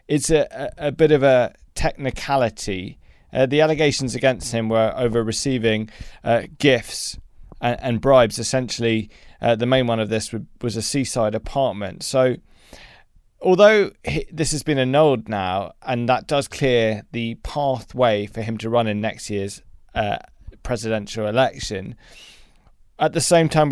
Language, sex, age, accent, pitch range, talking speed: English, male, 20-39, British, 110-135 Hz, 145 wpm